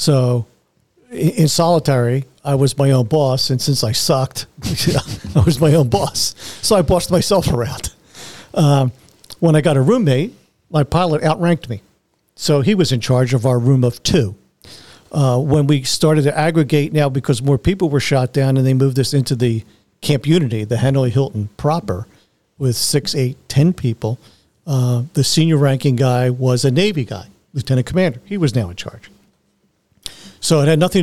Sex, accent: male, American